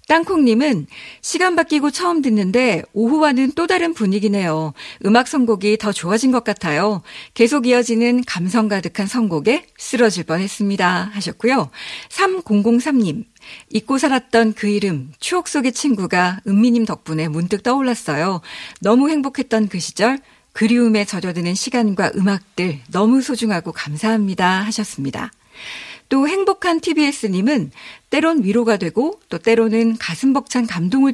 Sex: female